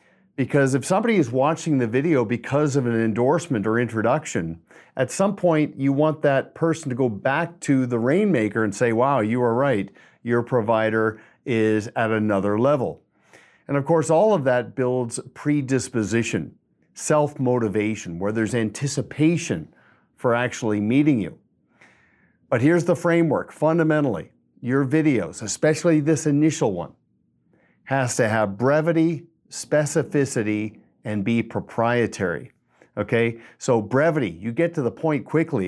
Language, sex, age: English, male, 50-69